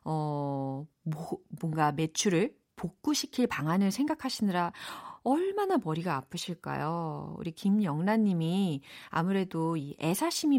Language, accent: Korean, native